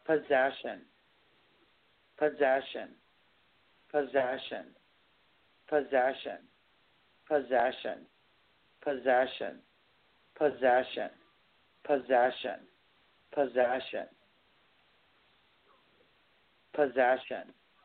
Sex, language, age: male, English, 50-69